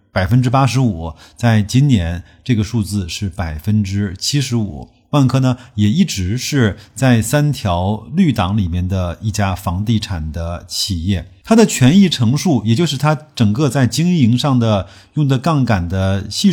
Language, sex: Chinese, male